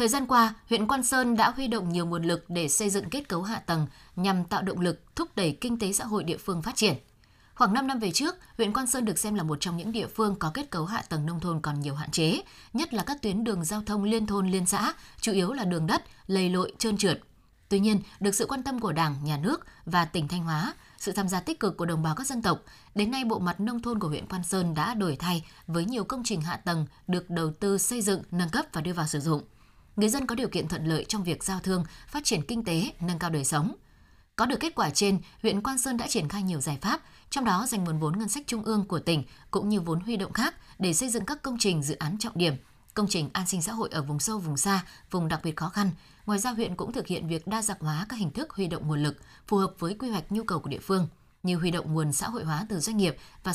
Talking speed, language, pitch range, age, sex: 280 wpm, Vietnamese, 165-220 Hz, 20-39, female